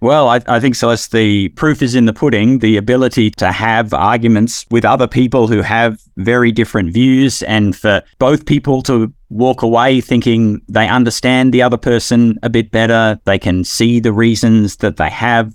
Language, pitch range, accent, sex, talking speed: English, 105-135 Hz, Australian, male, 185 wpm